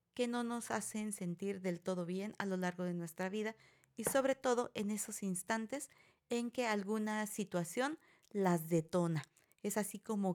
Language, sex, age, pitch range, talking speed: Spanish, female, 40-59, 190-250 Hz, 170 wpm